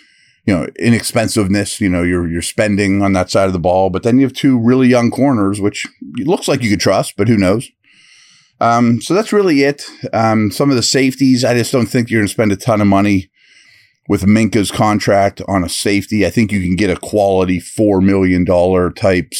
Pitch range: 90-115 Hz